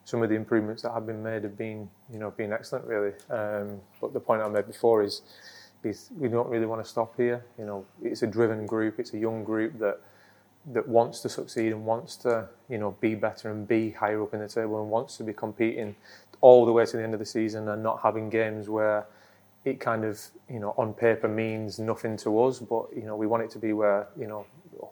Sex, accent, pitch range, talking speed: male, British, 105-115 Hz, 245 wpm